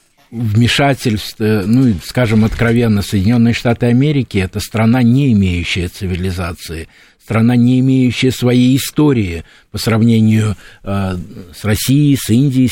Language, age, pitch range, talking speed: Russian, 60-79, 100-125 Hz, 120 wpm